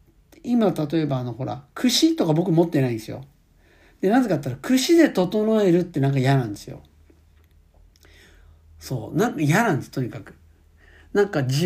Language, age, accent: Japanese, 60-79, native